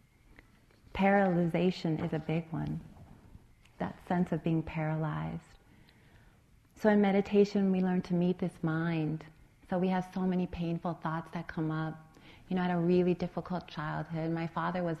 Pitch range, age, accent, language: 155-180 Hz, 30-49, American, English